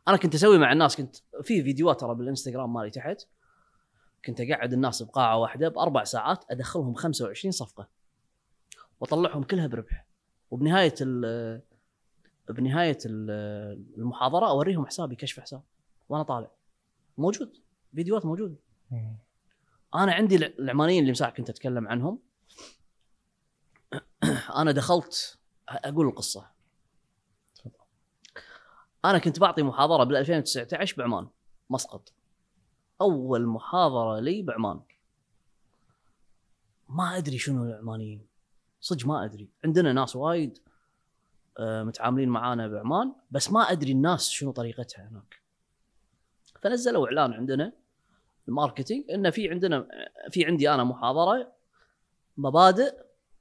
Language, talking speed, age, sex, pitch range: Arabic, 105 wpm, 20-39, female, 120-175 Hz